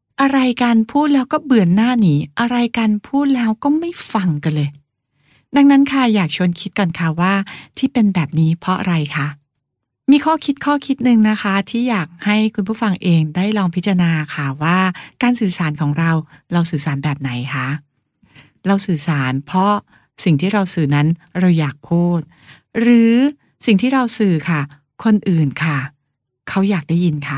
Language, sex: English, female